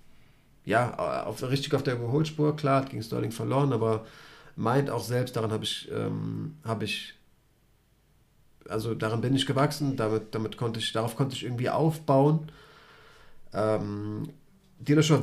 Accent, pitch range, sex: German, 110-145 Hz, male